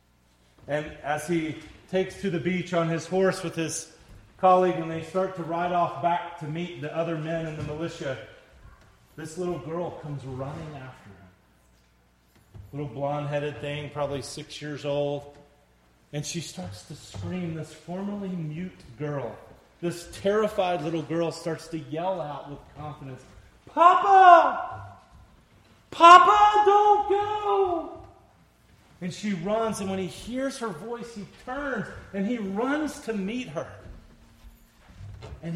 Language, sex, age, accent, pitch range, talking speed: English, male, 30-49, American, 145-220 Hz, 140 wpm